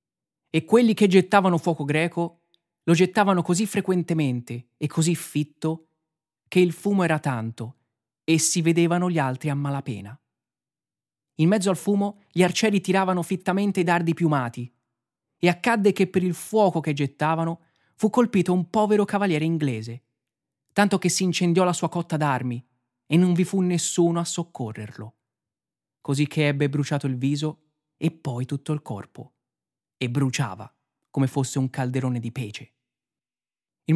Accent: native